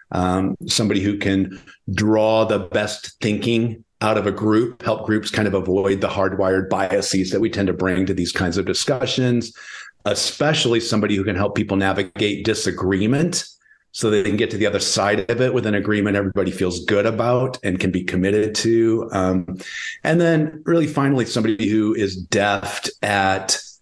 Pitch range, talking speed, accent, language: 95-115 Hz, 175 wpm, American, English